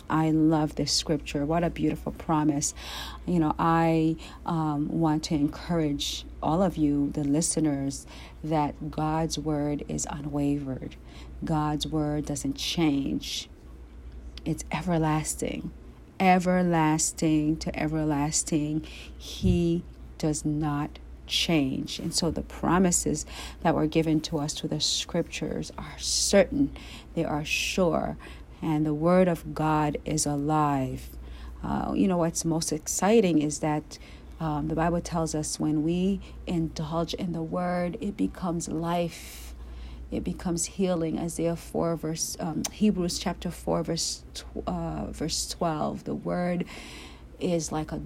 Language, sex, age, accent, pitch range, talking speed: English, female, 40-59, American, 145-165 Hz, 130 wpm